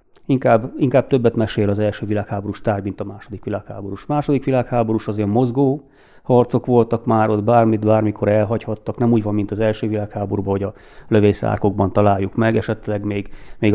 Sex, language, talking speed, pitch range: male, Hungarian, 170 wpm, 105-120 Hz